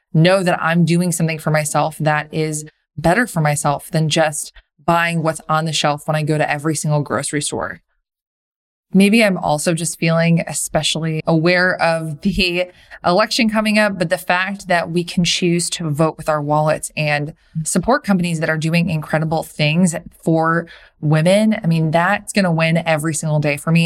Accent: American